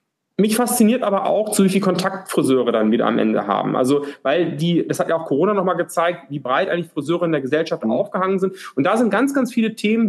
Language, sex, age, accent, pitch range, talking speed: German, male, 30-49, German, 150-200 Hz, 240 wpm